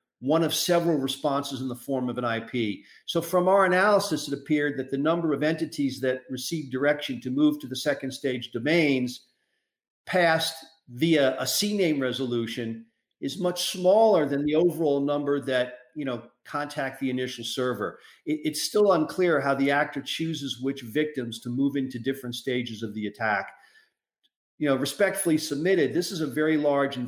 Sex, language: male, English